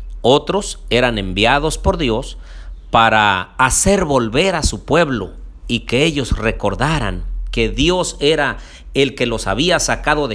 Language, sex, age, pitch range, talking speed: Spanish, male, 50-69, 105-155 Hz, 140 wpm